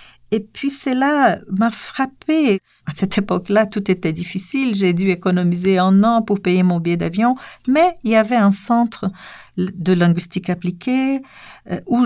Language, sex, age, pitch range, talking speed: French, female, 50-69, 165-220 Hz, 155 wpm